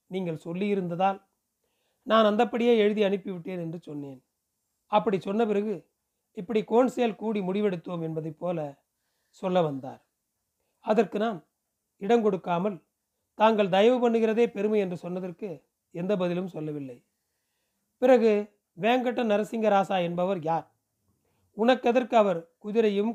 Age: 40-59